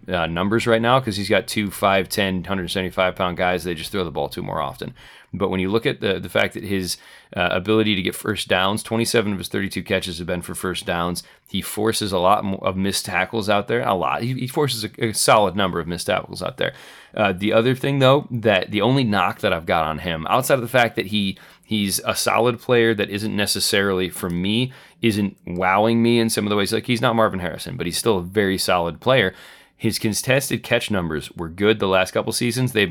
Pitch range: 90-110 Hz